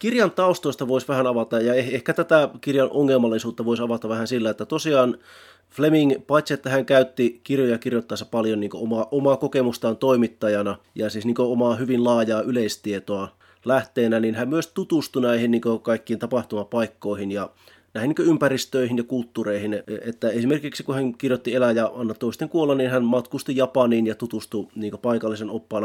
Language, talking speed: Finnish, 160 wpm